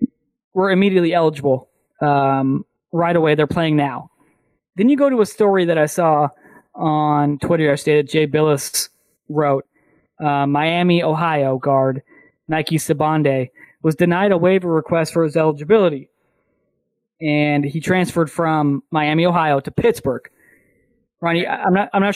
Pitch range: 145-170 Hz